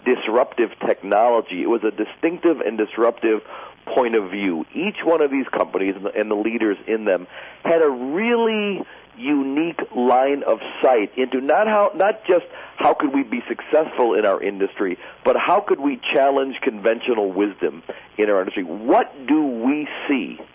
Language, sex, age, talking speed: English, male, 50-69, 160 wpm